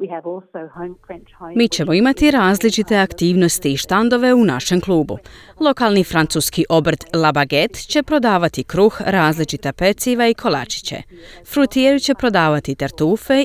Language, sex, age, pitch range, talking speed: Croatian, female, 30-49, 150-240 Hz, 110 wpm